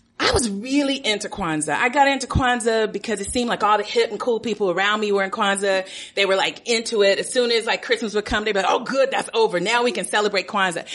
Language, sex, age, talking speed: English, female, 30-49, 265 wpm